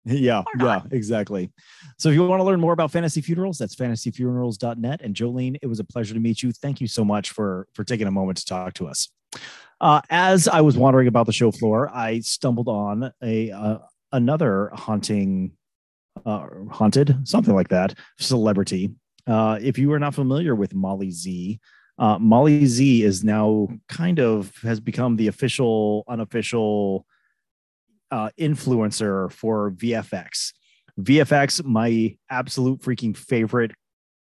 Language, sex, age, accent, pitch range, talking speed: English, male, 30-49, American, 100-125 Hz, 155 wpm